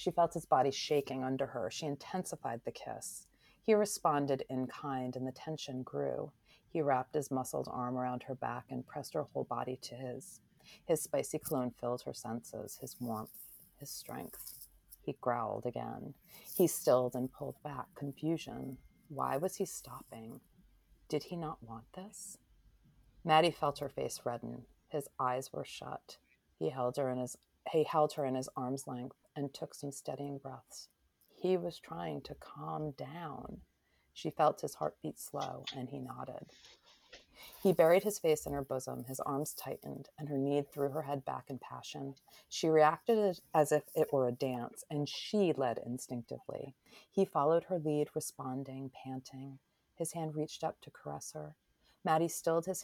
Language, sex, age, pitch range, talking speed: English, female, 30-49, 130-155 Hz, 170 wpm